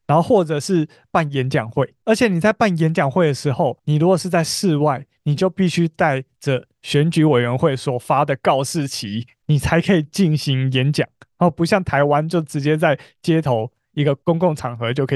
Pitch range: 135-180 Hz